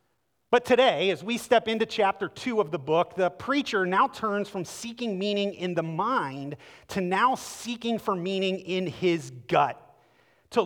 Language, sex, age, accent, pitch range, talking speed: English, male, 30-49, American, 160-230 Hz, 170 wpm